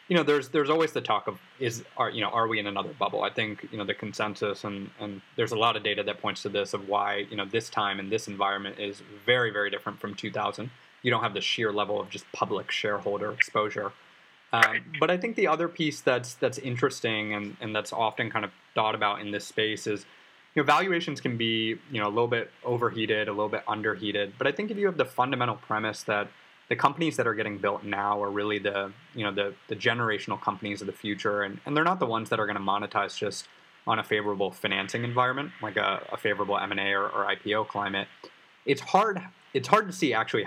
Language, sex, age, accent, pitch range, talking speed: English, male, 20-39, American, 100-125 Hz, 235 wpm